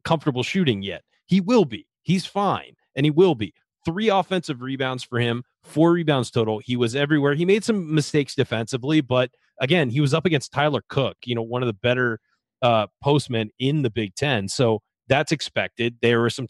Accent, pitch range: American, 115-150 Hz